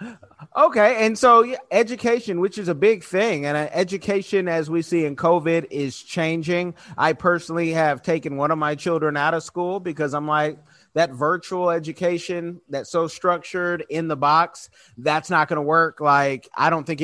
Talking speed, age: 175 wpm, 30-49